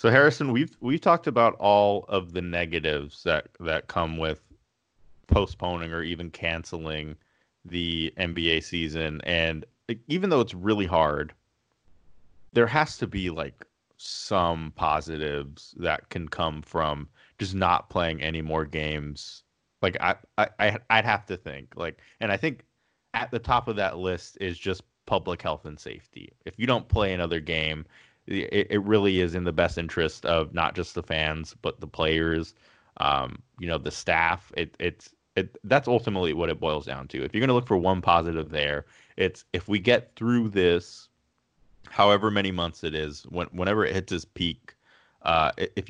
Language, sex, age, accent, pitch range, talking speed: English, male, 30-49, American, 80-100 Hz, 170 wpm